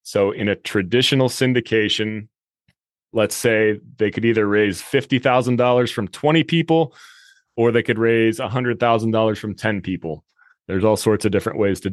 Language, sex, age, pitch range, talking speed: English, male, 30-49, 105-125 Hz, 150 wpm